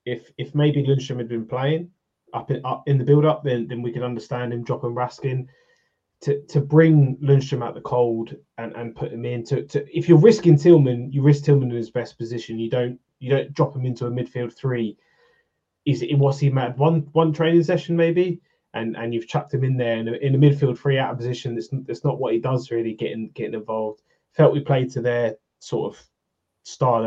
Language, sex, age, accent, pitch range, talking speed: English, male, 20-39, British, 120-150 Hz, 225 wpm